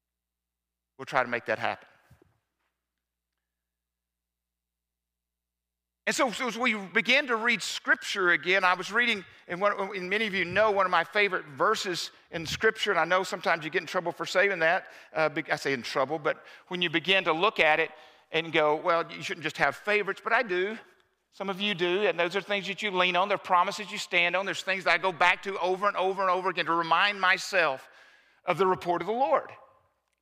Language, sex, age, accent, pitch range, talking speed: English, male, 50-69, American, 155-205 Hz, 210 wpm